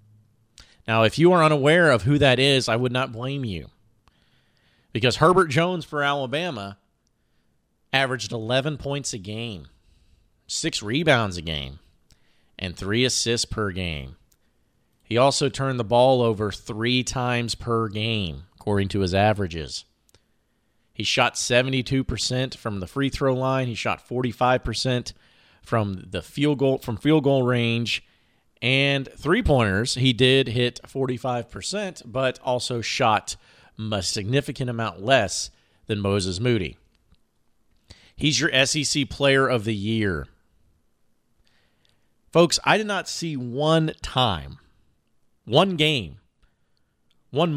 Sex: male